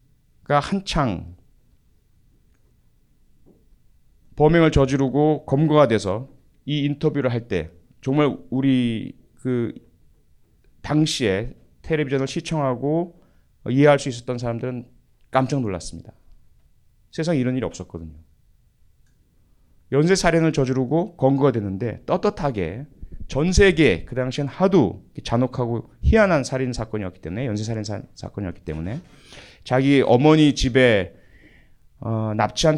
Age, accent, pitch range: 30-49, native, 105-145 Hz